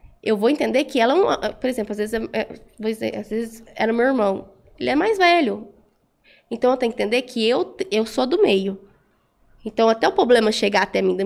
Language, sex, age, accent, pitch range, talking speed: Portuguese, female, 10-29, Brazilian, 220-305 Hz, 215 wpm